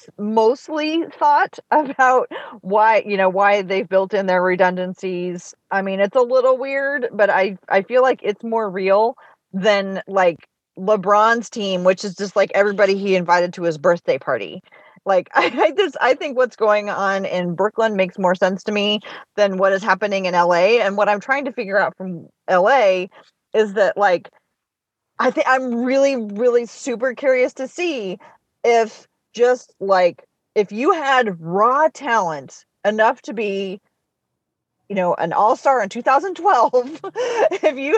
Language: English